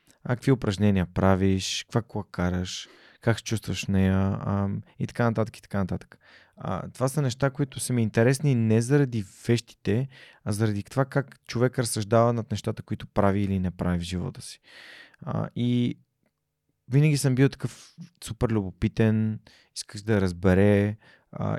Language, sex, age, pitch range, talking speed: Bulgarian, male, 20-39, 105-135 Hz, 160 wpm